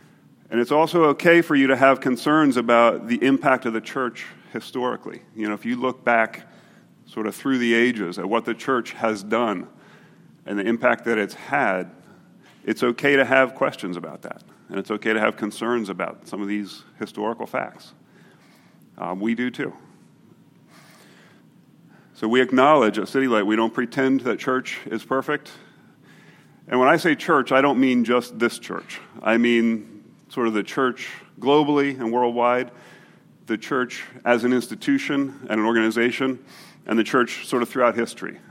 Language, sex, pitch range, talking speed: English, male, 110-130 Hz, 170 wpm